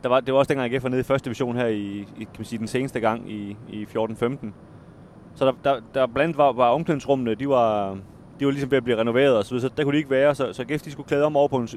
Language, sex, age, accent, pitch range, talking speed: Danish, male, 30-49, native, 115-140 Hz, 290 wpm